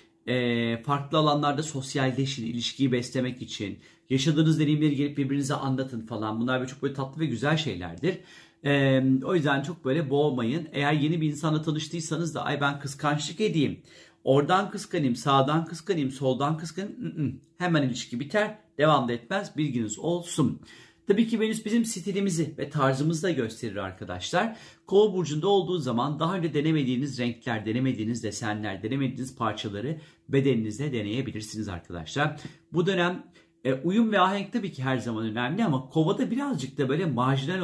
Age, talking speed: 40-59, 150 wpm